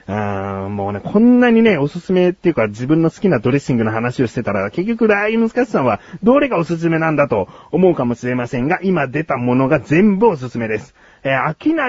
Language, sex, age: Japanese, male, 40-59